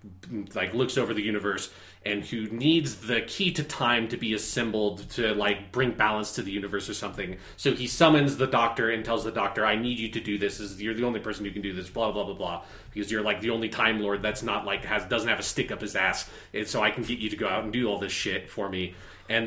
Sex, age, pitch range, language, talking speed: male, 30-49, 105-130 Hz, English, 265 wpm